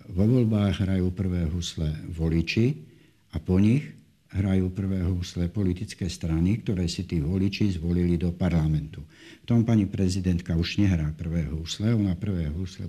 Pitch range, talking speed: 80-100 Hz, 150 wpm